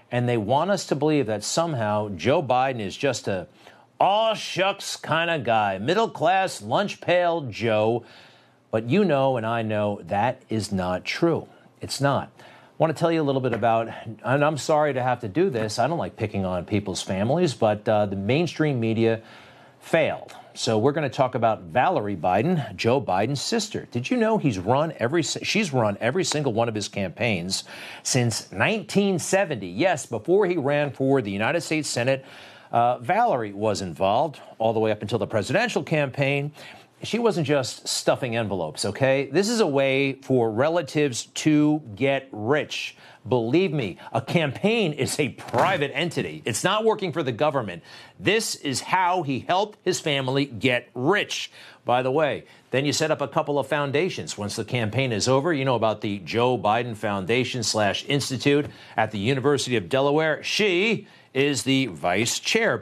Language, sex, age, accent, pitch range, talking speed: English, male, 50-69, American, 115-160 Hz, 180 wpm